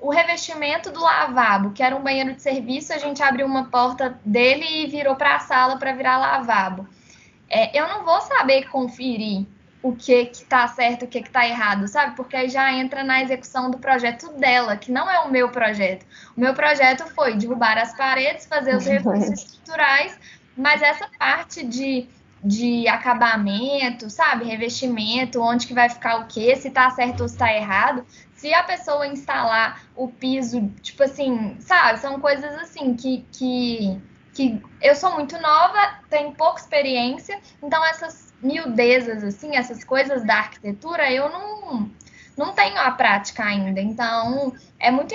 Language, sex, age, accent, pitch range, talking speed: Portuguese, female, 10-29, Brazilian, 240-295 Hz, 170 wpm